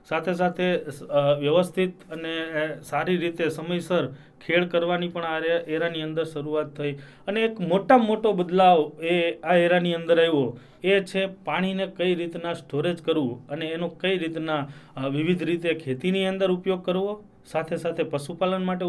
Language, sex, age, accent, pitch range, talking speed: English, male, 30-49, Indian, 145-175 Hz, 145 wpm